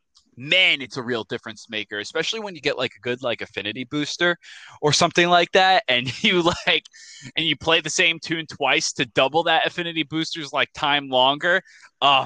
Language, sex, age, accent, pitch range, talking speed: English, male, 20-39, American, 115-165 Hz, 190 wpm